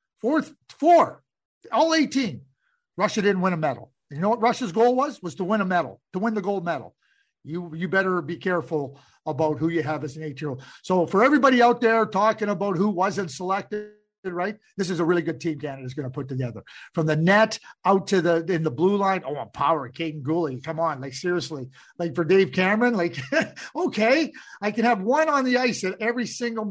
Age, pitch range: 50-69, 155-210 Hz